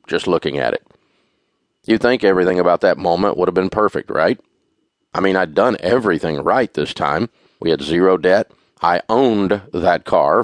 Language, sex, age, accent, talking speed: English, male, 40-59, American, 180 wpm